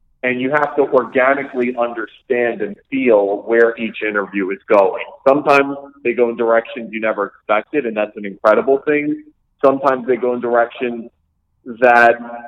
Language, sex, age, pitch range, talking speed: English, male, 40-59, 110-130 Hz, 155 wpm